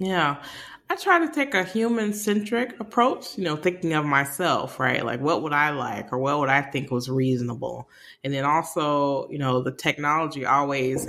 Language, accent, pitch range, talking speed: English, American, 130-165 Hz, 190 wpm